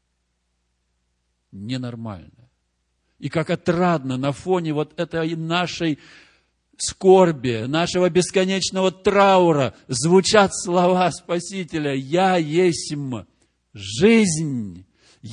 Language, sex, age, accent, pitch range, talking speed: Russian, male, 50-69, native, 130-195 Hz, 75 wpm